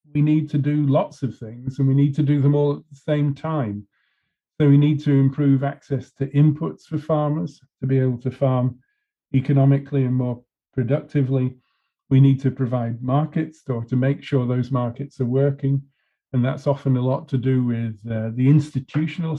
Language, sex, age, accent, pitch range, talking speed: English, male, 40-59, British, 125-145 Hz, 190 wpm